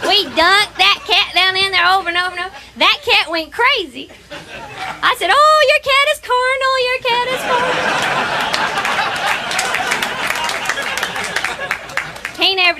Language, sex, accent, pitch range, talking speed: English, female, American, 215-295 Hz, 135 wpm